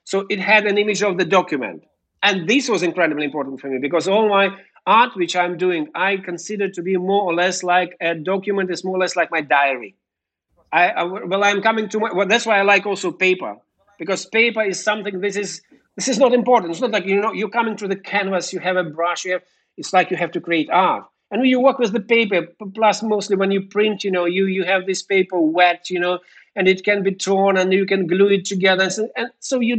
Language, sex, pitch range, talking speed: English, male, 180-225 Hz, 240 wpm